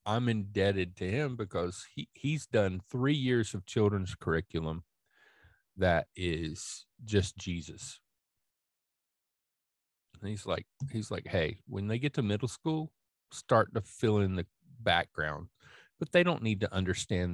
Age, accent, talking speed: 40-59, American, 140 wpm